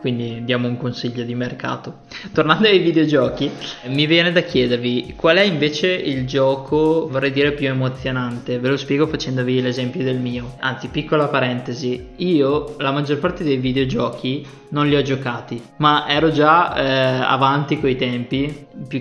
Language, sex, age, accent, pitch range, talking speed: Italian, male, 20-39, native, 130-150 Hz, 160 wpm